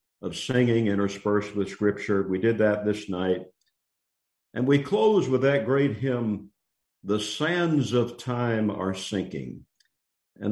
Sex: male